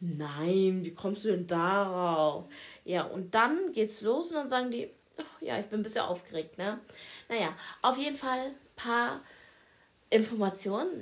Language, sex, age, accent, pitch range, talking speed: German, female, 20-39, German, 190-240 Hz, 165 wpm